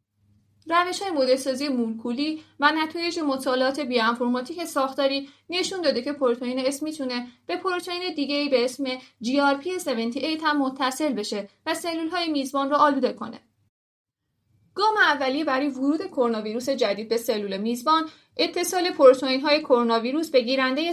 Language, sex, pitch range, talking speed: Persian, female, 245-335 Hz, 130 wpm